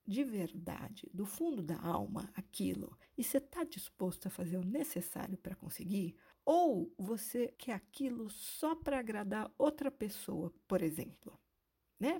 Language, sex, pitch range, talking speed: Portuguese, female, 185-270 Hz, 145 wpm